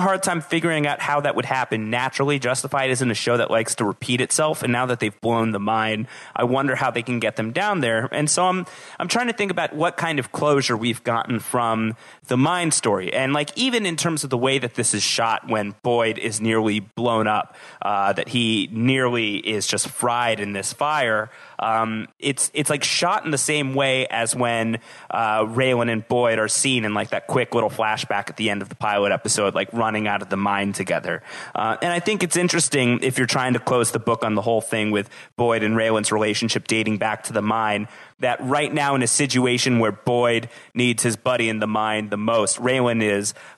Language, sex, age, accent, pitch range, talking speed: English, male, 30-49, American, 110-135 Hz, 225 wpm